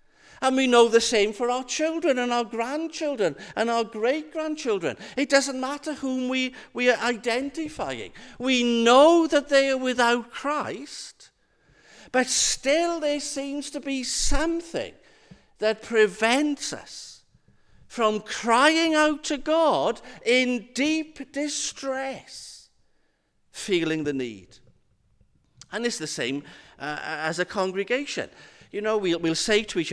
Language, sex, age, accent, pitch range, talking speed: English, male, 50-69, British, 185-285 Hz, 130 wpm